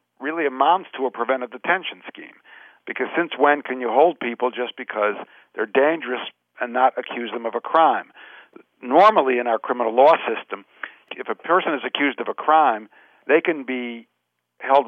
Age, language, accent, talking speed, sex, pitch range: 50-69, English, American, 175 wpm, male, 115-145 Hz